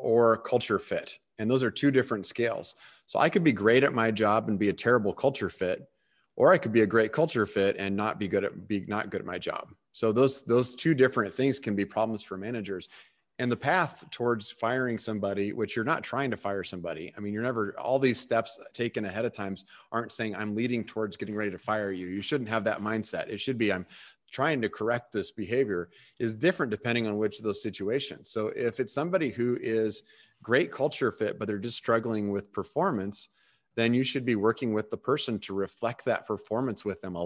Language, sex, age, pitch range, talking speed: English, male, 30-49, 100-120 Hz, 225 wpm